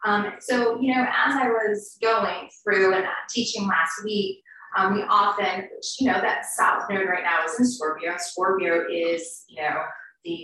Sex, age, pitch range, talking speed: female, 20-39, 185-250 Hz, 180 wpm